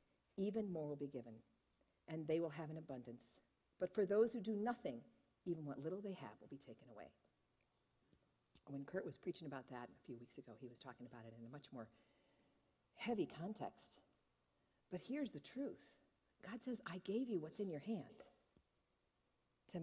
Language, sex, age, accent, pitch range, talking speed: English, female, 50-69, American, 160-230 Hz, 185 wpm